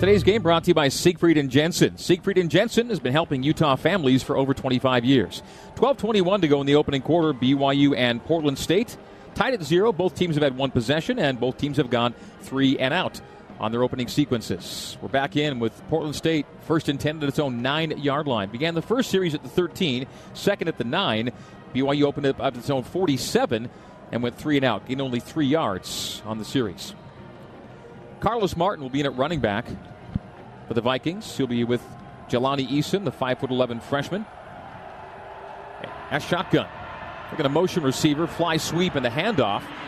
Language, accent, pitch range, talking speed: English, American, 130-165 Hz, 195 wpm